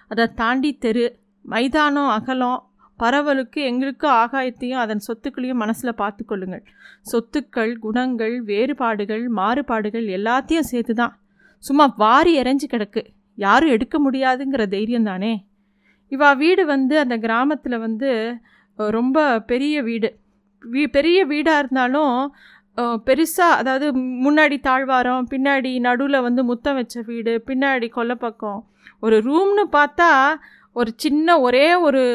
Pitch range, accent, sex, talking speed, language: 230-280 Hz, native, female, 110 wpm, Tamil